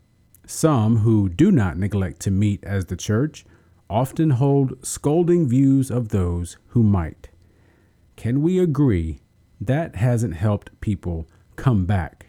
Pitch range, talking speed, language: 90-130 Hz, 130 wpm, English